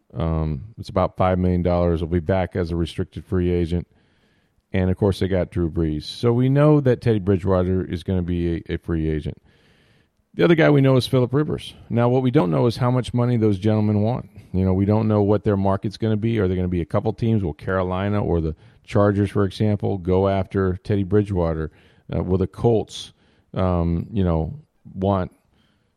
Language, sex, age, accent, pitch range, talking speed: English, male, 40-59, American, 90-115 Hz, 215 wpm